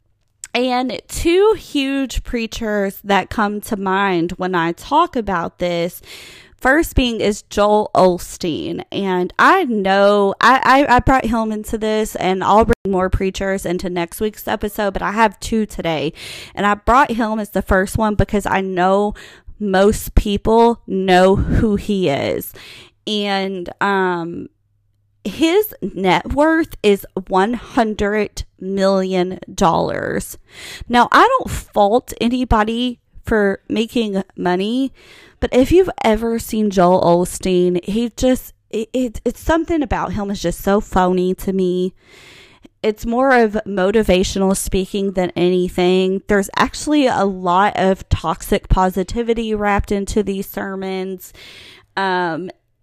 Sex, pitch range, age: female, 185-230 Hz, 20-39